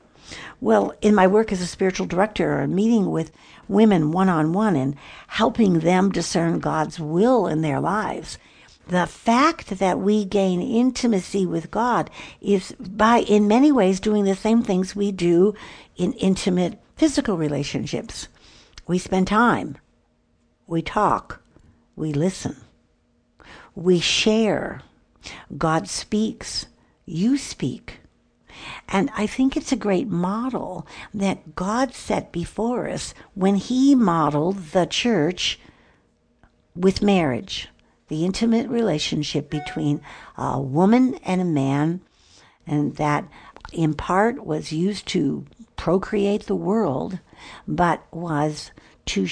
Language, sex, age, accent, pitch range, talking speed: English, female, 60-79, American, 160-210 Hz, 120 wpm